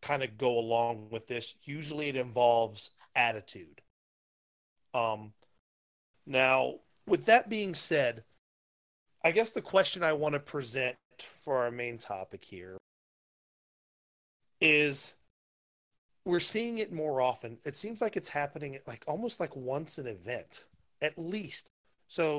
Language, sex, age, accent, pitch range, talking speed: English, male, 30-49, American, 115-150 Hz, 130 wpm